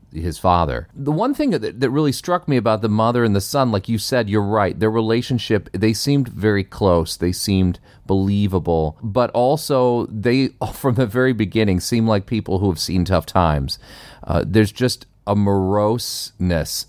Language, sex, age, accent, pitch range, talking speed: English, male, 40-59, American, 85-110 Hz, 180 wpm